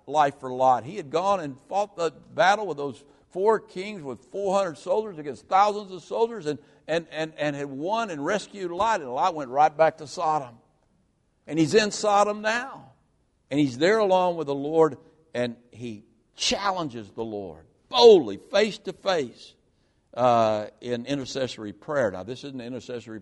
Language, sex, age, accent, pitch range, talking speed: English, male, 60-79, American, 110-160 Hz, 170 wpm